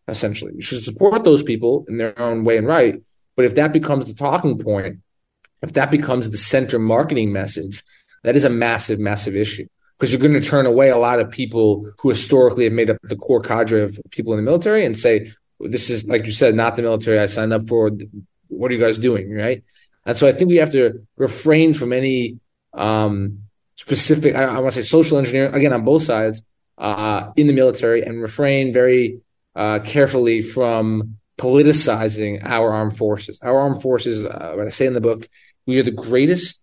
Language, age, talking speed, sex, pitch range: English, 20-39, 205 wpm, male, 105-130 Hz